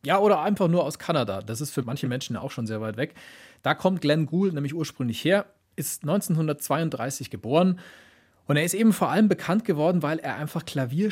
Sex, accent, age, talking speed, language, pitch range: male, German, 40-59, 205 wpm, German, 135-175 Hz